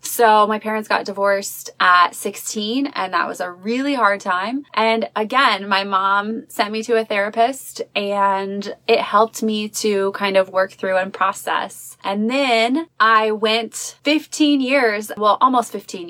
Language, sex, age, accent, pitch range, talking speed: English, female, 20-39, American, 190-230 Hz, 160 wpm